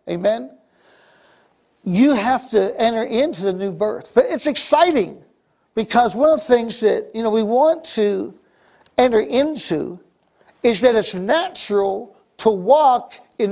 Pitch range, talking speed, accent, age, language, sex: 210-260 Hz, 140 wpm, American, 60-79, English, male